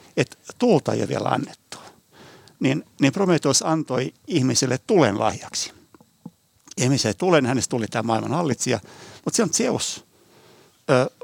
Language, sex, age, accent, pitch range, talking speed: Finnish, male, 60-79, native, 120-155 Hz, 125 wpm